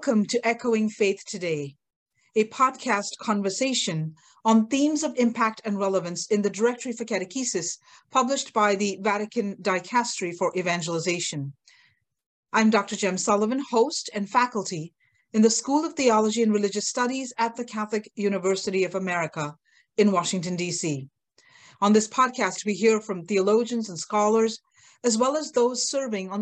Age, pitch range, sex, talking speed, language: 40-59, 190-245 Hz, female, 150 wpm, English